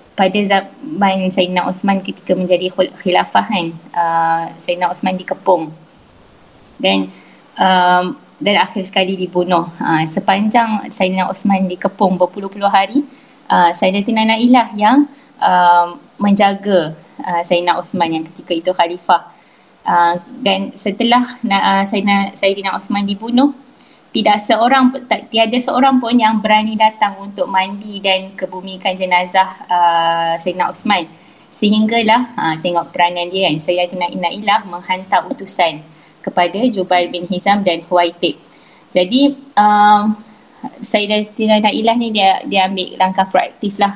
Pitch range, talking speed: 175-215 Hz, 120 wpm